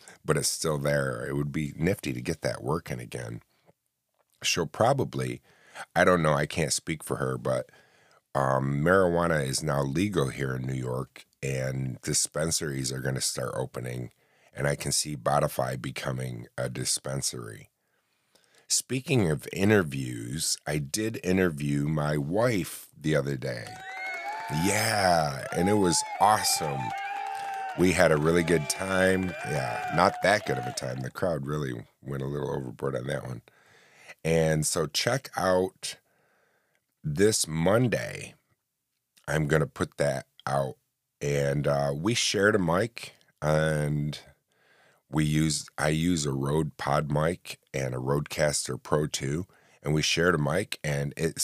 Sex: male